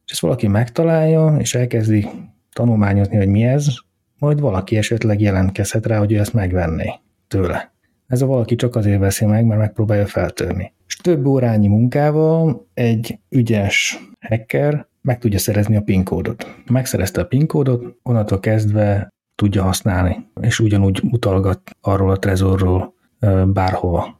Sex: male